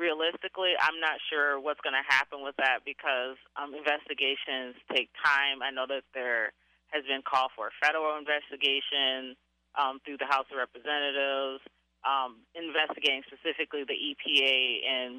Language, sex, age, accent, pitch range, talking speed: English, female, 20-39, American, 130-155 Hz, 150 wpm